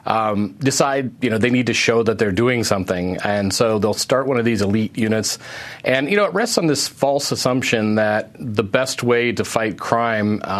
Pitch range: 105-125 Hz